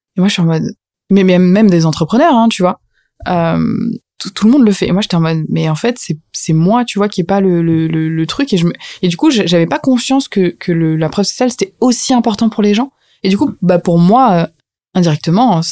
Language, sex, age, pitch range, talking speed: French, female, 20-39, 165-200 Hz, 250 wpm